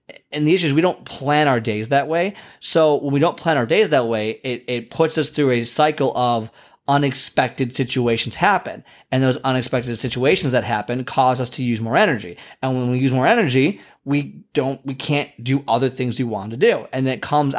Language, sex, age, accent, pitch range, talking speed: English, male, 30-49, American, 120-150 Hz, 215 wpm